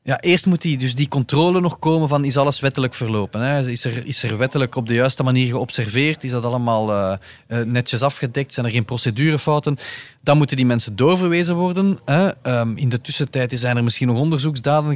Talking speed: 210 wpm